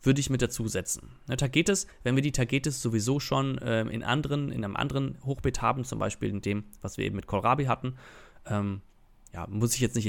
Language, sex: German, male